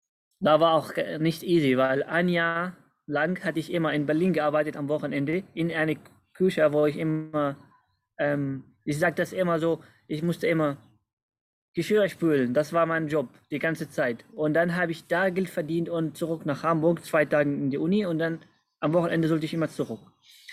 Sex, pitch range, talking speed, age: male, 145-170 Hz, 190 wpm, 20-39